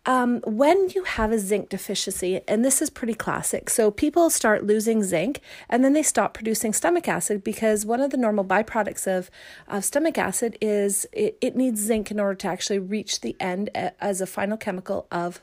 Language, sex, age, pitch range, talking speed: English, female, 30-49, 205-270 Hz, 200 wpm